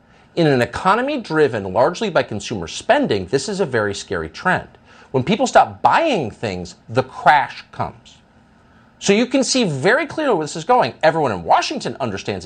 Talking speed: 175 wpm